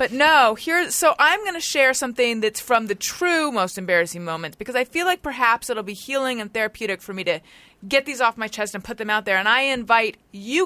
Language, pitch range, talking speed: English, 165-220 Hz, 250 wpm